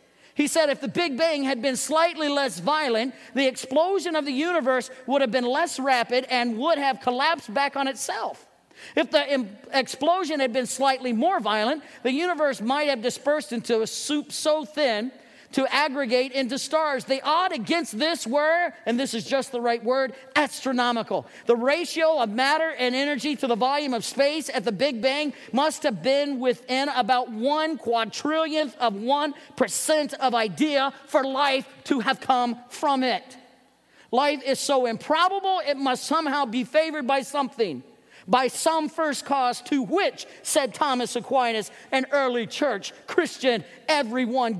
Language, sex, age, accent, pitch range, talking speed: English, male, 40-59, American, 255-315 Hz, 165 wpm